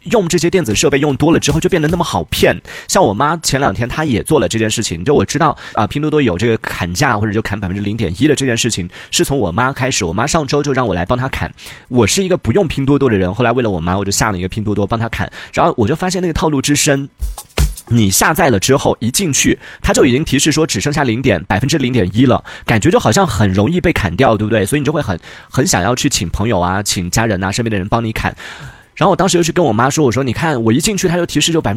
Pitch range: 110-155 Hz